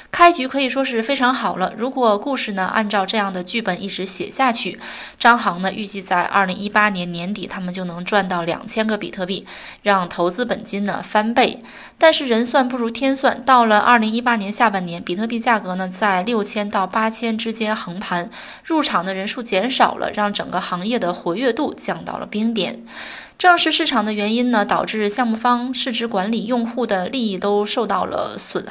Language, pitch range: Chinese, 195-240 Hz